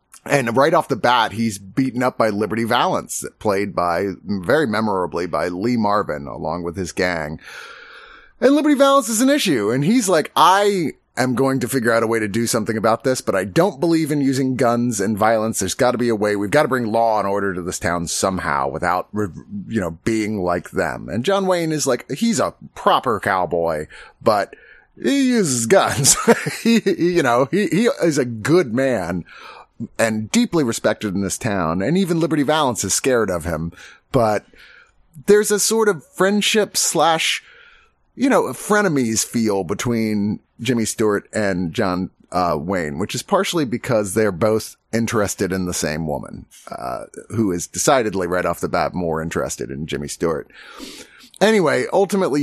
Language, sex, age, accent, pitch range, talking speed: English, male, 30-49, American, 95-160 Hz, 175 wpm